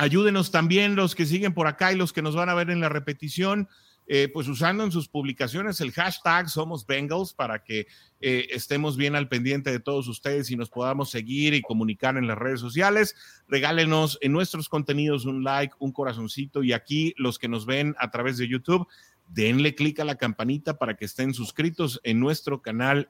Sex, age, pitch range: male, 40-59, 120-150 Hz